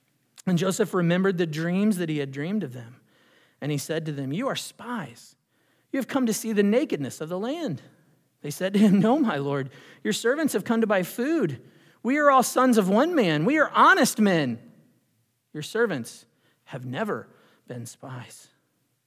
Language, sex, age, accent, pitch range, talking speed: English, male, 40-59, American, 135-165 Hz, 190 wpm